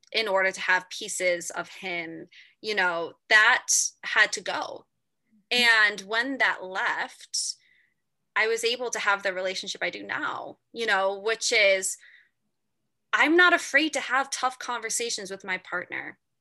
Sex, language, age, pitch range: female, English, 20-39, 195-275 Hz